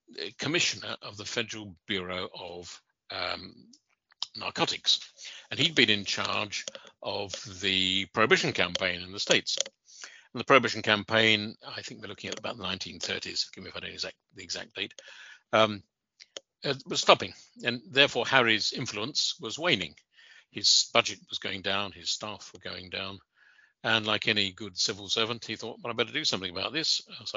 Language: English